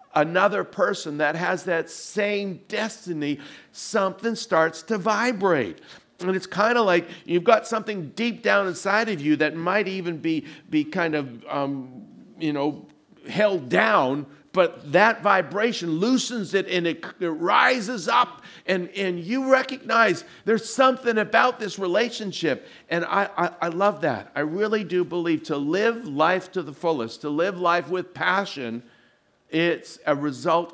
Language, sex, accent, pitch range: English, male, American, 155-215 Hz